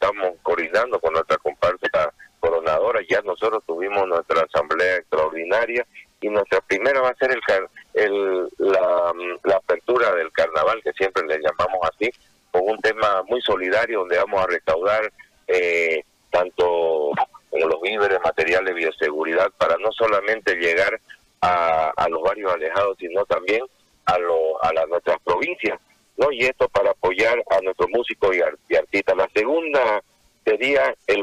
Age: 50-69